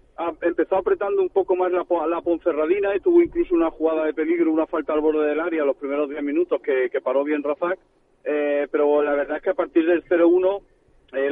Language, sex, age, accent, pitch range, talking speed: Spanish, male, 40-59, Spanish, 155-195 Hz, 205 wpm